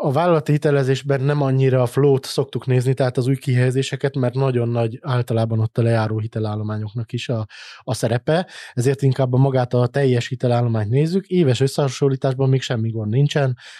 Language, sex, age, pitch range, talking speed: Hungarian, male, 20-39, 120-140 Hz, 170 wpm